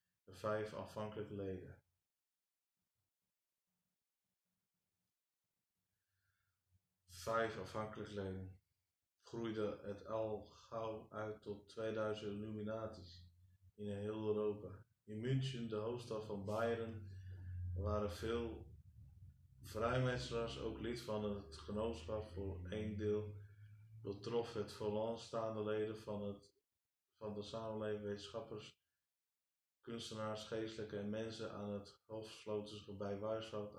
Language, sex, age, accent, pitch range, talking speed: Dutch, male, 20-39, Dutch, 100-115 Hz, 100 wpm